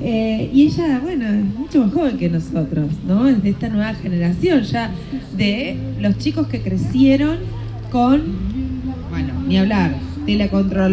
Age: 20-39